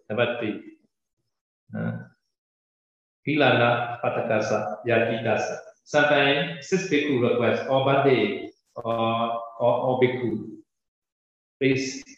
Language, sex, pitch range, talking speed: Vietnamese, male, 110-130 Hz, 70 wpm